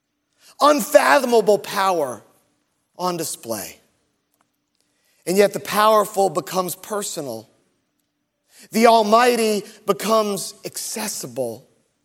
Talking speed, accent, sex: 70 wpm, American, male